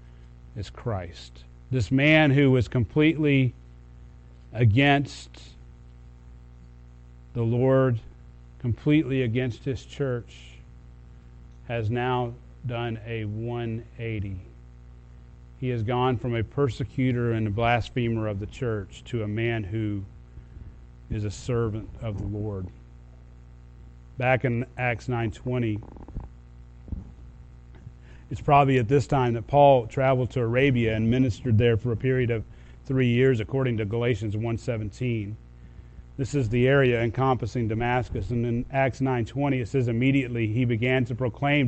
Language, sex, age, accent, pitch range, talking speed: English, male, 40-59, American, 95-135 Hz, 120 wpm